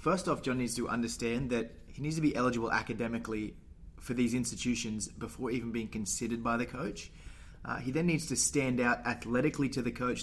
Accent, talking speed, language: Australian, 200 wpm, English